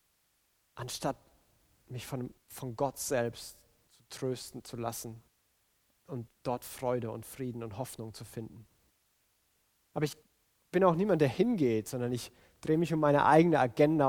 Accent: German